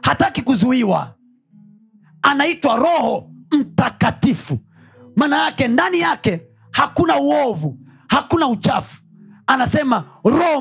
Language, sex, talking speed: Swahili, male, 85 wpm